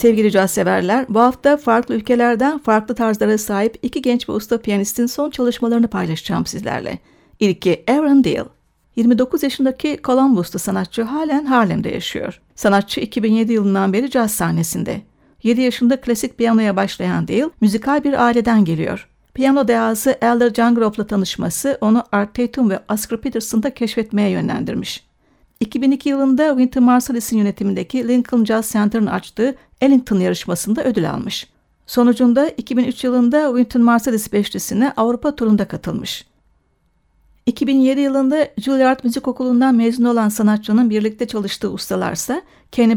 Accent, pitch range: native, 210-260 Hz